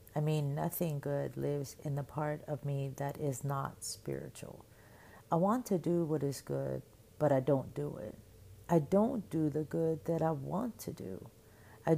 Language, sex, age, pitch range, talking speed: English, female, 40-59, 115-165 Hz, 185 wpm